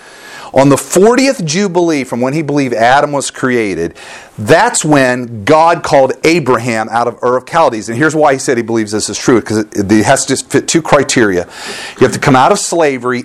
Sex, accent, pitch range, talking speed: male, American, 115-160 Hz, 210 wpm